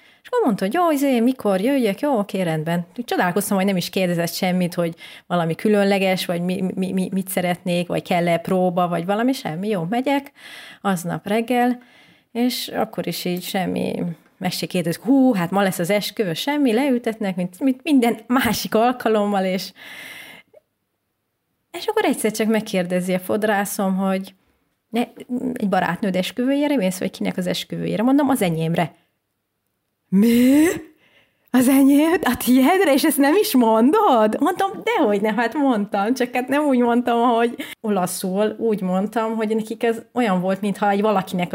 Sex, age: female, 30-49